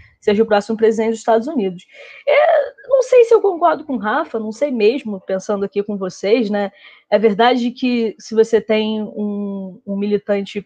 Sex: female